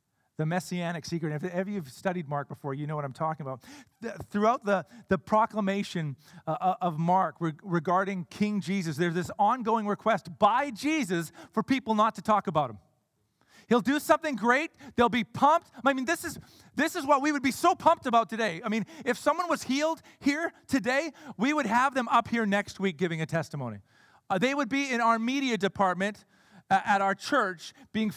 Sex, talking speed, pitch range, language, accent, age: male, 185 wpm, 185-260 Hz, English, American, 40-59